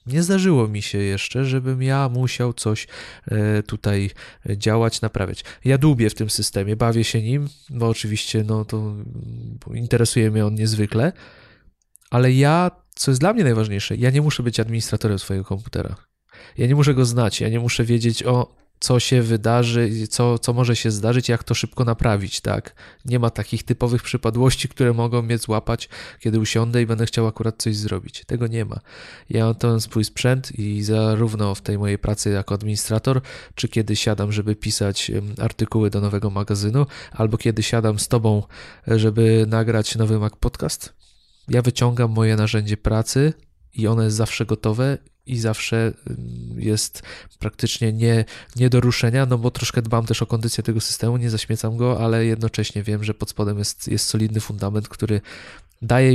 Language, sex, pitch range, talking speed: Polish, male, 105-120 Hz, 170 wpm